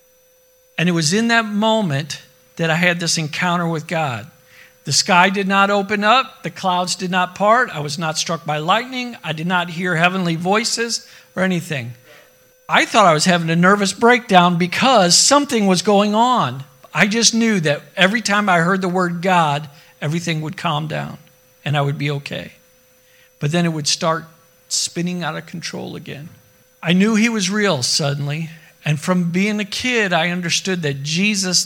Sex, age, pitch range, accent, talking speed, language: male, 50-69, 150-195 Hz, American, 180 wpm, English